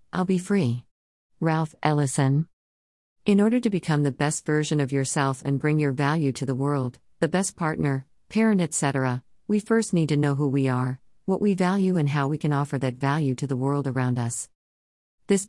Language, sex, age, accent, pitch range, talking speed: English, female, 50-69, American, 130-160 Hz, 195 wpm